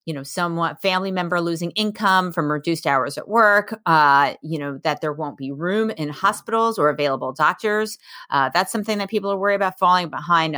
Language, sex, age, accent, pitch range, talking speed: English, female, 30-49, American, 155-210 Hz, 200 wpm